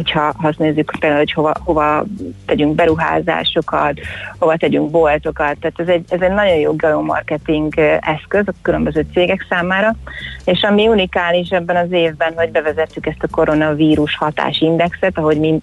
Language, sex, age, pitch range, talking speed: Hungarian, female, 30-49, 150-170 Hz, 155 wpm